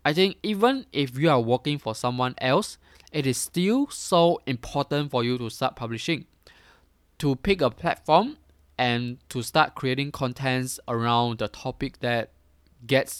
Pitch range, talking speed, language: 115-145 Hz, 155 wpm, English